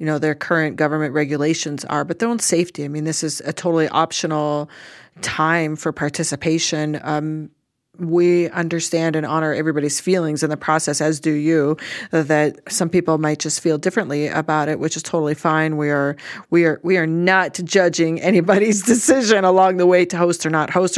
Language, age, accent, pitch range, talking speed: English, 40-59, American, 150-180 Hz, 185 wpm